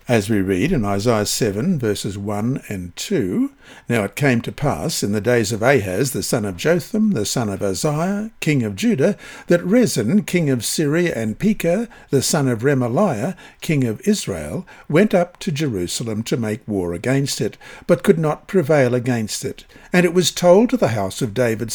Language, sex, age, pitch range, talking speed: English, male, 60-79, 120-180 Hz, 190 wpm